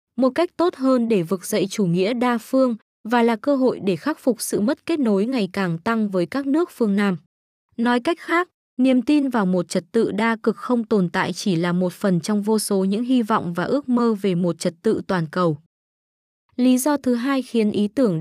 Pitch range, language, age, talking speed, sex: 190-245 Hz, Vietnamese, 20-39, 230 wpm, female